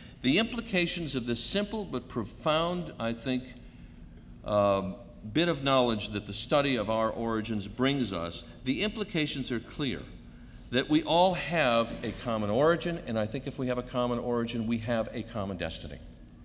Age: 50-69